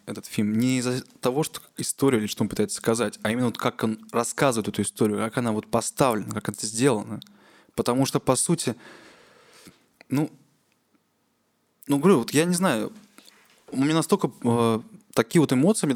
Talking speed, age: 170 wpm, 20-39